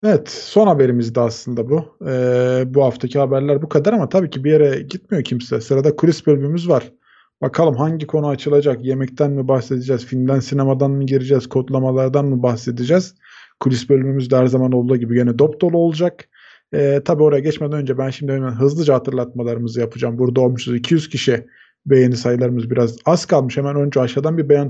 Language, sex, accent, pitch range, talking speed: Turkish, male, native, 130-155 Hz, 175 wpm